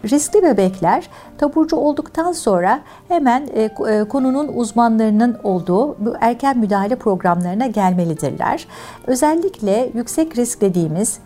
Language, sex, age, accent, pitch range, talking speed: Turkish, female, 60-79, native, 190-275 Hz, 95 wpm